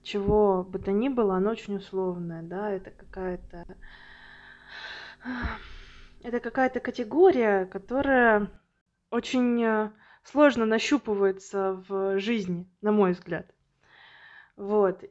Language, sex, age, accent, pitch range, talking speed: Russian, female, 20-39, native, 195-225 Hz, 95 wpm